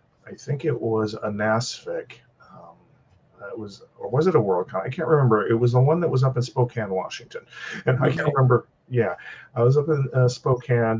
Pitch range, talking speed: 110-150 Hz, 205 wpm